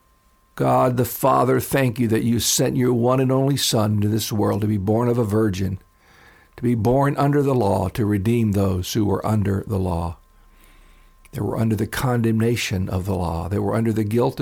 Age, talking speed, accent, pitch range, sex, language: 50-69, 205 wpm, American, 95-120 Hz, male, English